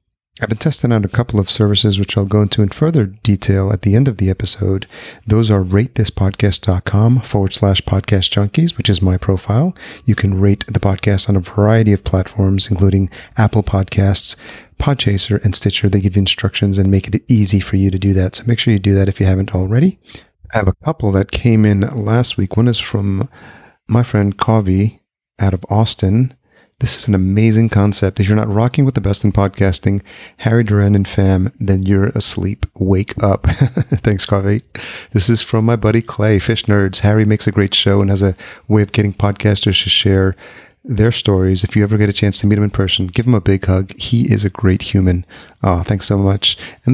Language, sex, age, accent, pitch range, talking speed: English, male, 30-49, American, 95-110 Hz, 210 wpm